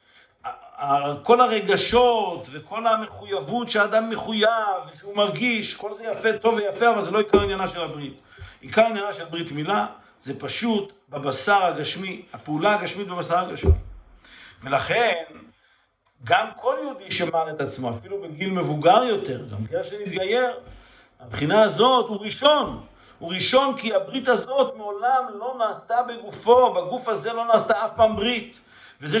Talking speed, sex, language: 140 wpm, male, Hebrew